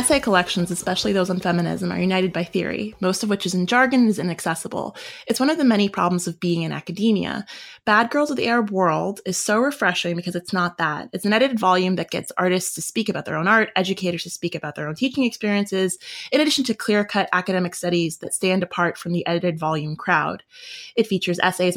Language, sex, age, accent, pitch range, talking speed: English, female, 20-39, American, 170-205 Hz, 220 wpm